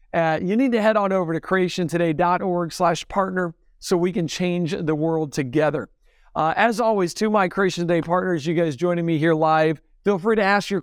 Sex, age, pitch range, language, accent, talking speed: male, 50-69, 175-210 Hz, English, American, 200 wpm